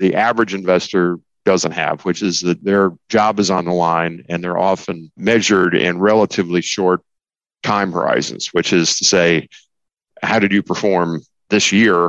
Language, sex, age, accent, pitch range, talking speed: English, male, 50-69, American, 80-95 Hz, 165 wpm